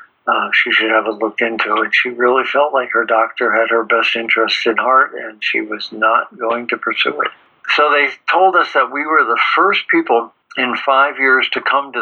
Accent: American